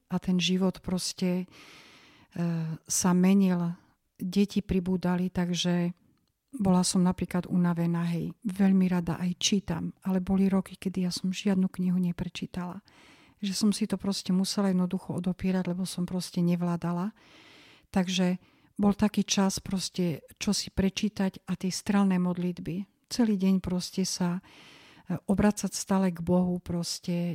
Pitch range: 175-195 Hz